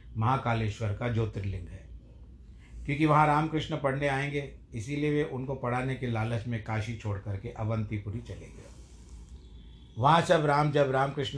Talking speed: 140 wpm